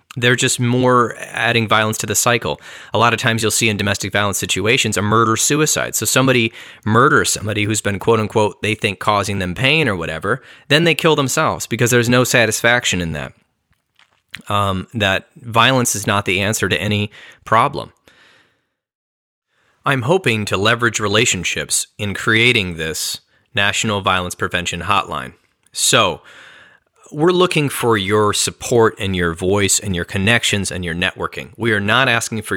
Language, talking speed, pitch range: English, 160 wpm, 100-120 Hz